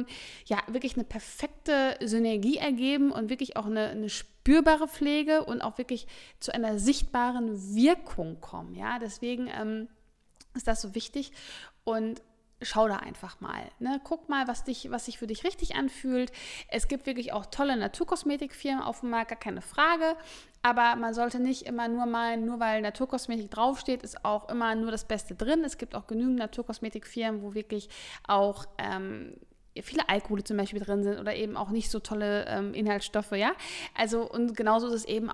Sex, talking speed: female, 175 wpm